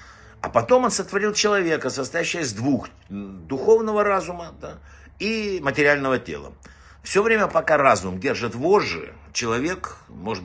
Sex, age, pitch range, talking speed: male, 60-79, 105-165 Hz, 120 wpm